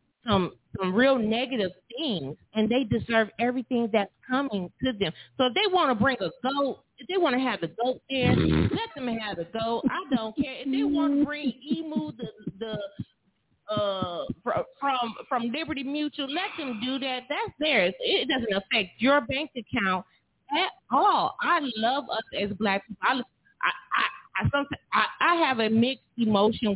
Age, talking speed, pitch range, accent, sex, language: 30-49, 180 wpm, 210-275 Hz, American, female, English